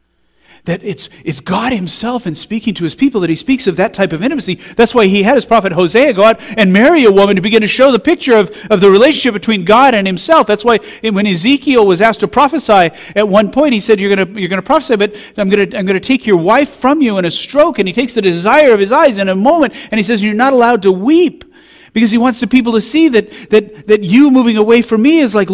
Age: 40-59